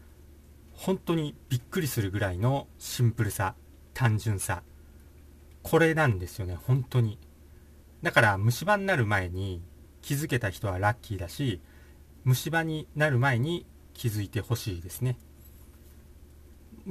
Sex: male